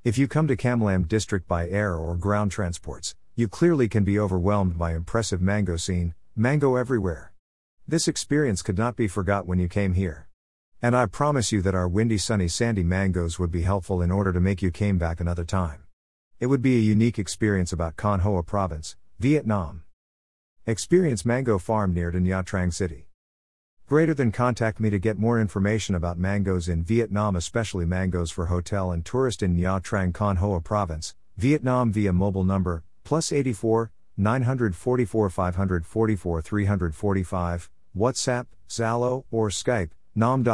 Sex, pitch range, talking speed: male, 85-115 Hz, 165 wpm